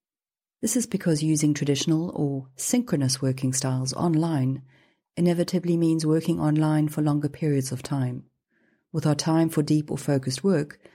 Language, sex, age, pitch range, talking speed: English, female, 40-59, 135-175 Hz, 150 wpm